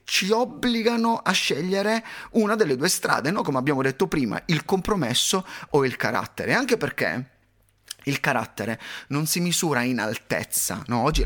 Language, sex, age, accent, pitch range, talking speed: Italian, male, 30-49, native, 115-160 Hz, 145 wpm